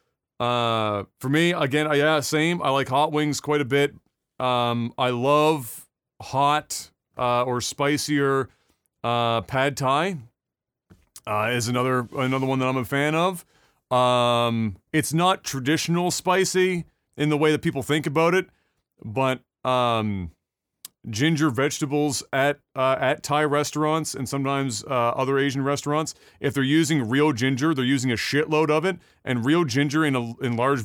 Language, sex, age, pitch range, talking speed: English, male, 30-49, 125-150 Hz, 150 wpm